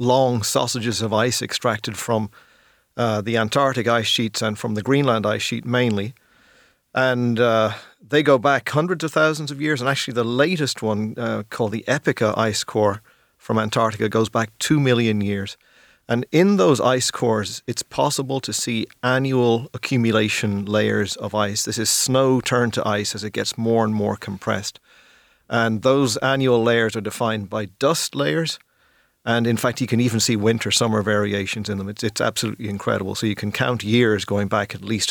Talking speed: 185 wpm